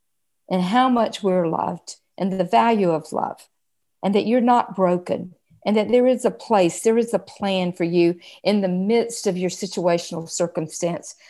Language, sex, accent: English, female, American